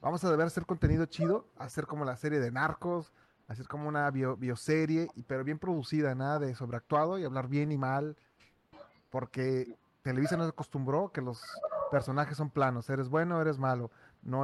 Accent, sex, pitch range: Mexican, male, 130-165 Hz